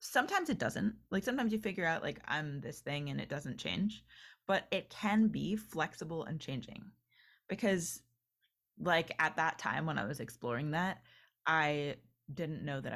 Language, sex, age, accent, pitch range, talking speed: English, female, 20-39, American, 140-200 Hz, 170 wpm